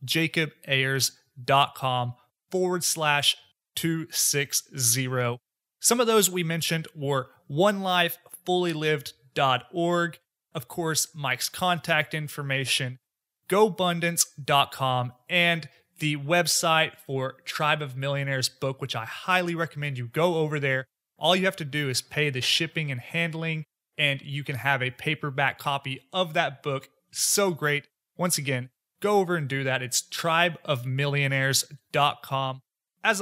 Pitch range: 135-175 Hz